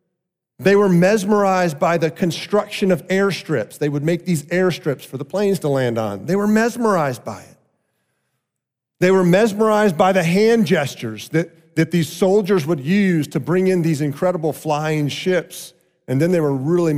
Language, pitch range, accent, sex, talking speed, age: English, 135-190 Hz, American, male, 175 wpm, 40-59